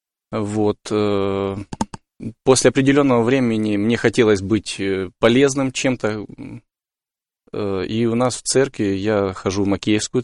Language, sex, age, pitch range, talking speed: Russian, male, 20-39, 100-120 Hz, 105 wpm